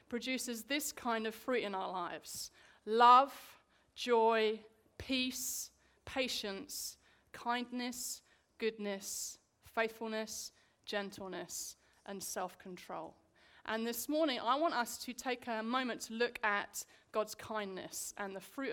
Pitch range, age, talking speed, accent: 220-275 Hz, 30-49, 115 wpm, British